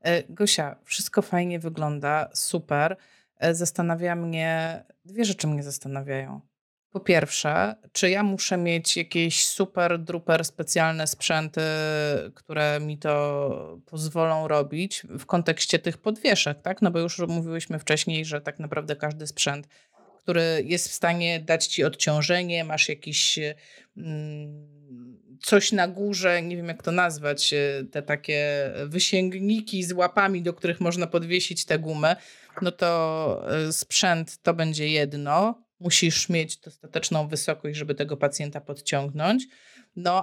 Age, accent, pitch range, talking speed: 30-49, native, 150-185 Hz, 125 wpm